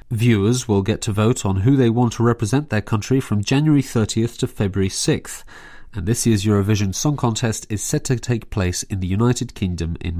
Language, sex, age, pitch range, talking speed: English, male, 30-49, 100-125 Hz, 205 wpm